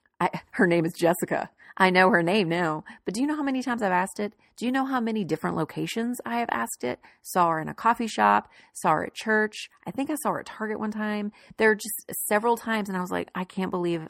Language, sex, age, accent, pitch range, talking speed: English, female, 30-49, American, 165-215 Hz, 260 wpm